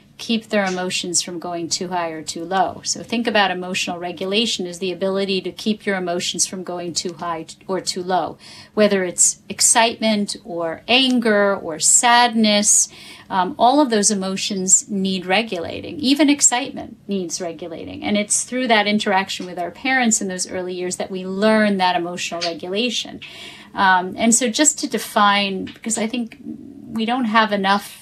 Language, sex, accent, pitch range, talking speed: English, female, American, 180-220 Hz, 165 wpm